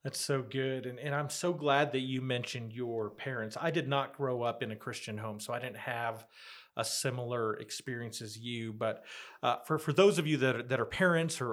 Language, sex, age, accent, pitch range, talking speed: English, male, 40-59, American, 125-150 Hz, 230 wpm